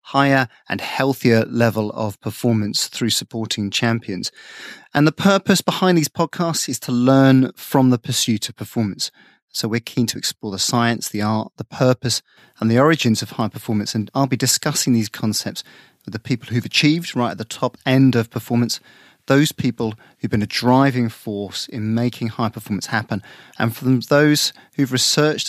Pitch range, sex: 110-135 Hz, male